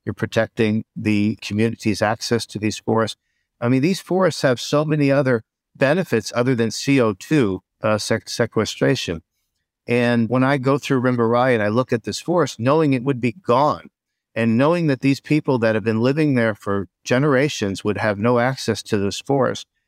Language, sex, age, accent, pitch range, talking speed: English, male, 50-69, American, 110-135 Hz, 175 wpm